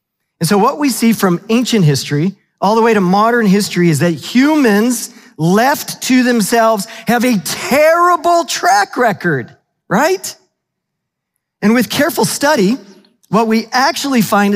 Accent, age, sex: American, 40-59, male